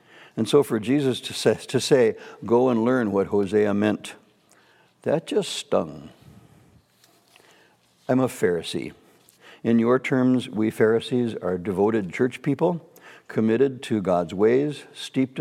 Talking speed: 125 wpm